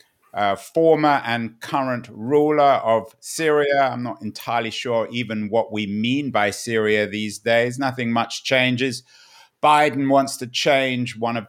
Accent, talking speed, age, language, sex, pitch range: British, 145 wpm, 50-69, English, male, 110-140 Hz